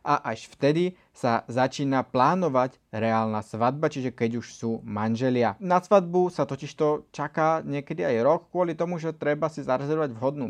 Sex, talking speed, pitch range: male, 160 wpm, 120-155 Hz